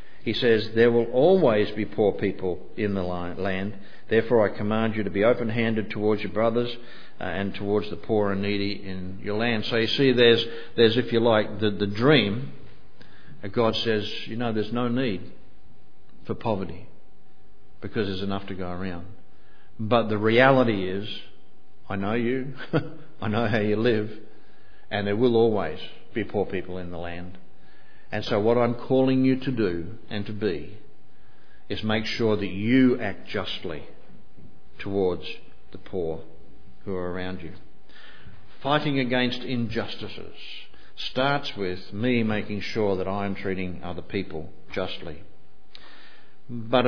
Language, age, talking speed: English, 50-69, 150 wpm